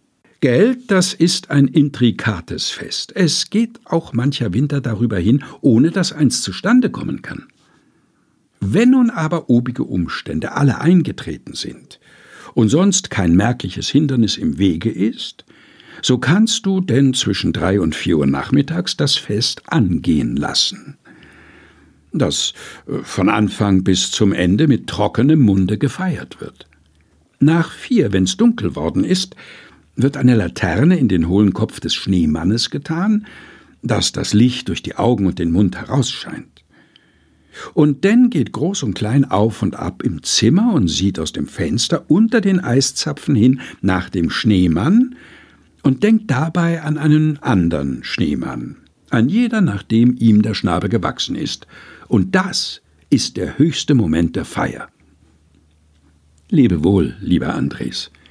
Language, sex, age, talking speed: German, male, 60-79, 140 wpm